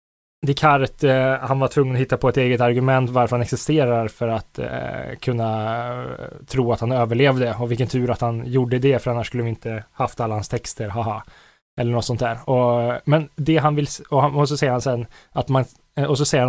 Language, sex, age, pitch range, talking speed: Swedish, male, 20-39, 120-150 Hz, 210 wpm